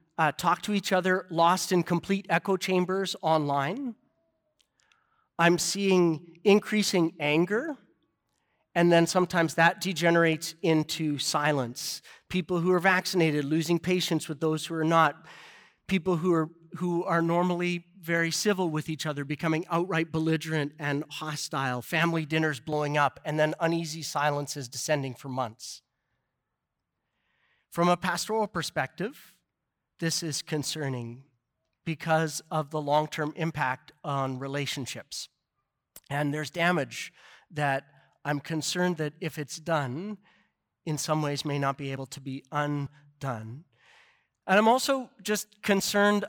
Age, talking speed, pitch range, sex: 40-59, 125 wpm, 145-175 Hz, male